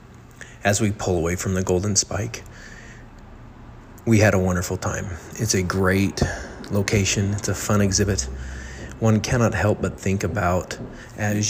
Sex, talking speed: male, 145 wpm